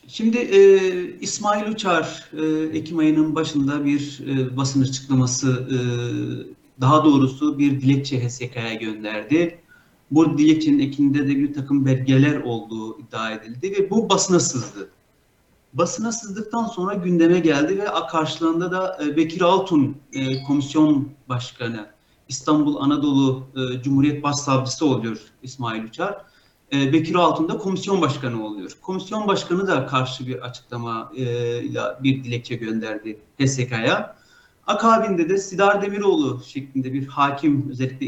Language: Turkish